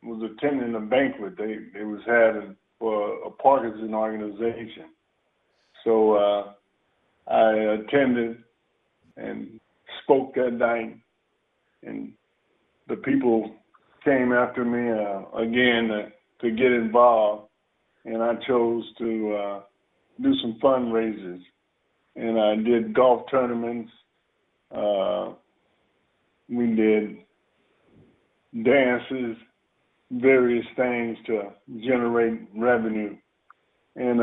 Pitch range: 110-125 Hz